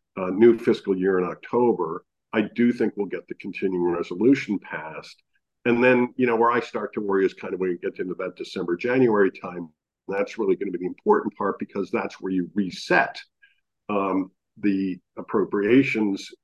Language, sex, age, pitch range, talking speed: English, male, 50-69, 90-120 Hz, 195 wpm